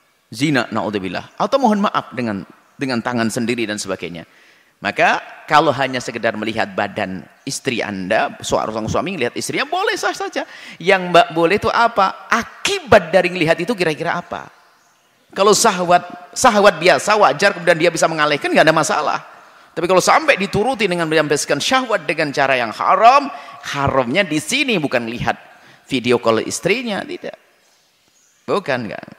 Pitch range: 145-200 Hz